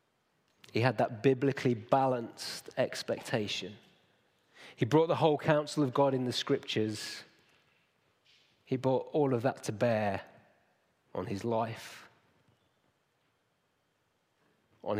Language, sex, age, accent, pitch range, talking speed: English, male, 30-49, British, 105-130 Hz, 110 wpm